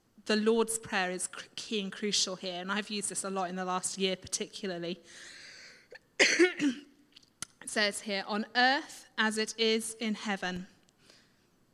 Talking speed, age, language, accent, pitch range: 150 wpm, 30-49, English, British, 200-230 Hz